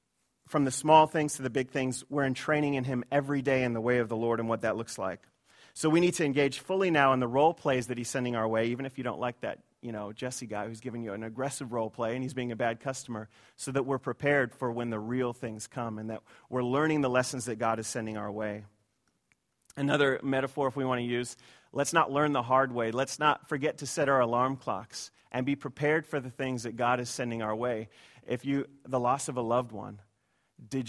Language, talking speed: English, 250 wpm